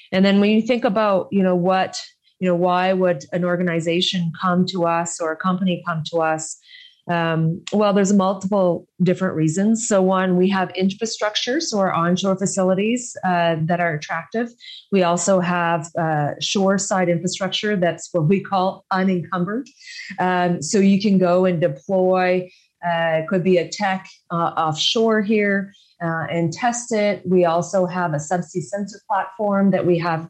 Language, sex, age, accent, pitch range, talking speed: English, female, 30-49, American, 175-200 Hz, 165 wpm